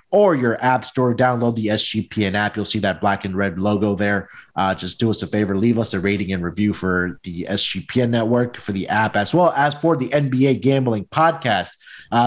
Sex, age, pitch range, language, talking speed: male, 30-49, 105-145 Hz, English, 215 wpm